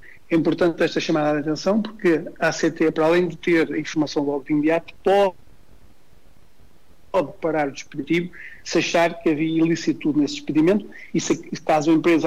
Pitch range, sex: 150-170 Hz, male